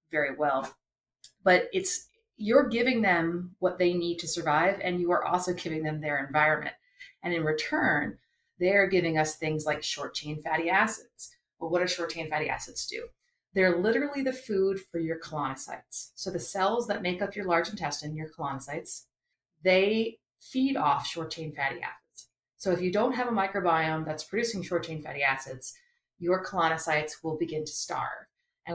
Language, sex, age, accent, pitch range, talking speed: English, female, 30-49, American, 155-195 Hz, 180 wpm